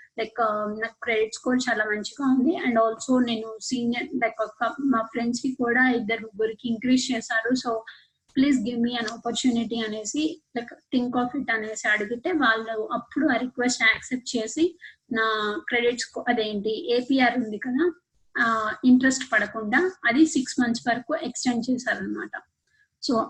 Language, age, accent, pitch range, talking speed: Telugu, 20-39, native, 230-270 Hz, 145 wpm